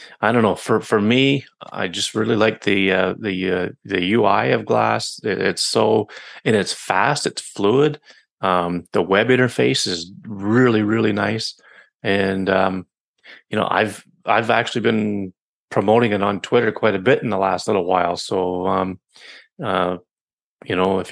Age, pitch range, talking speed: 30-49, 95-115 Hz, 170 wpm